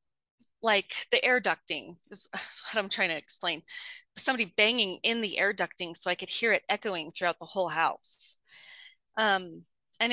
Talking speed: 170 wpm